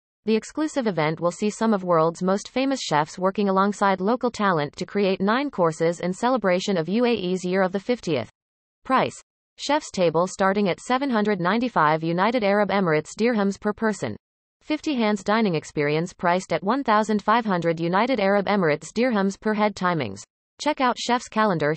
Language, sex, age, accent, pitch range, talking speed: English, female, 30-49, American, 170-225 Hz, 155 wpm